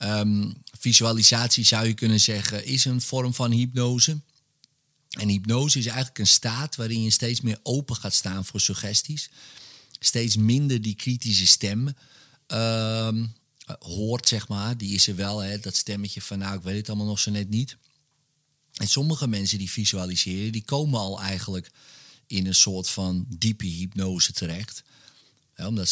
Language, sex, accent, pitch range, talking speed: Dutch, male, Dutch, 100-125 Hz, 155 wpm